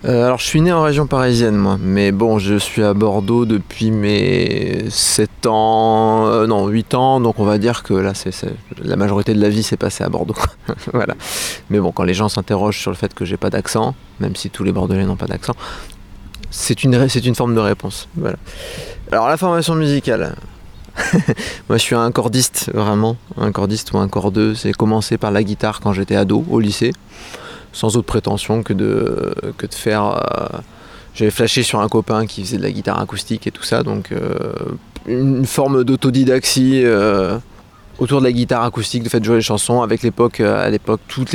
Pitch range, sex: 105-120 Hz, male